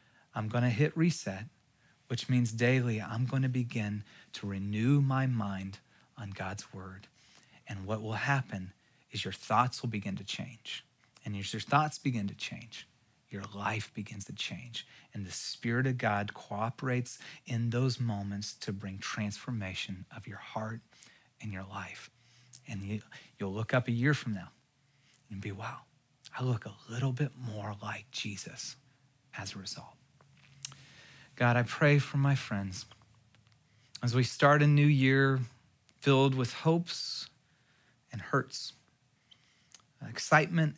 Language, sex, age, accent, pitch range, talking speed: English, male, 30-49, American, 110-140 Hz, 145 wpm